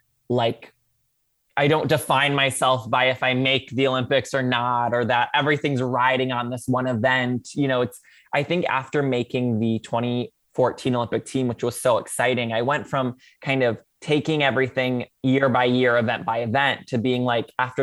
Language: English